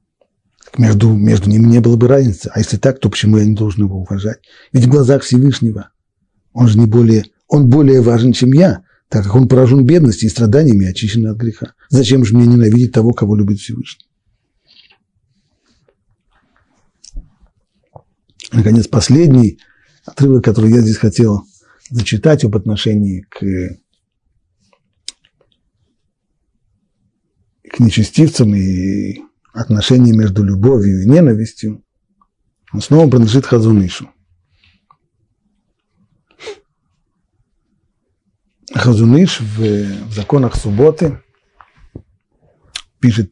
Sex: male